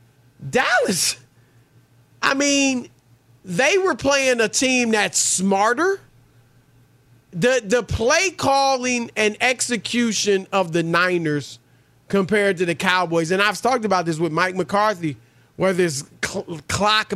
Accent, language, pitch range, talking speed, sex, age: American, English, 165-255 Hz, 120 wpm, male, 40-59